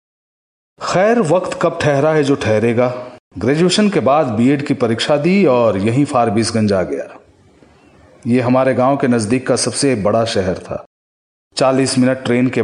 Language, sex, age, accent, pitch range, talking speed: Hindi, male, 40-59, native, 115-150 Hz, 140 wpm